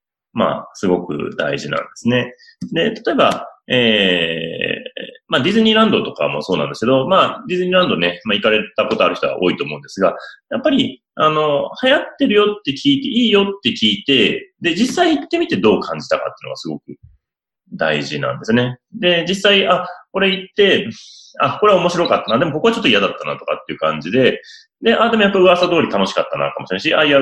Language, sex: Japanese, male